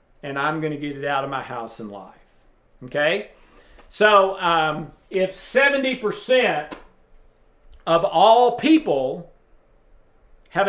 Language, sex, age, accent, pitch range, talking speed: English, male, 50-69, American, 155-200 Hz, 120 wpm